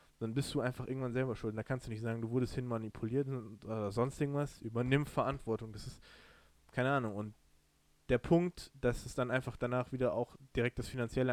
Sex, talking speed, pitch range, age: male, 195 wpm, 110-125 Hz, 20-39